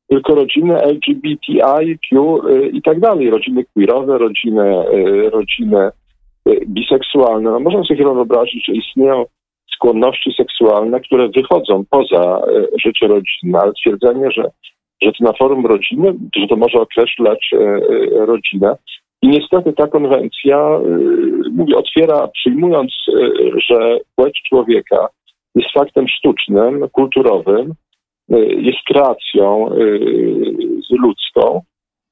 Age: 50-69